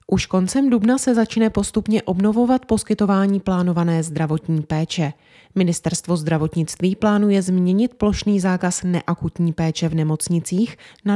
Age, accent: 30-49, native